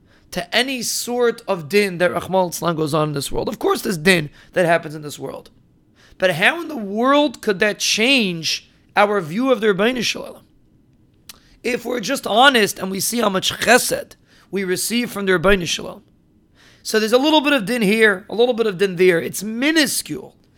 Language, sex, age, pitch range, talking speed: English, male, 40-59, 180-230 Hz, 190 wpm